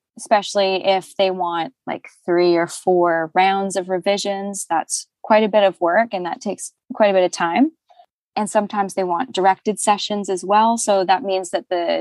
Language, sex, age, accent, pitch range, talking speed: English, female, 20-39, American, 180-235 Hz, 190 wpm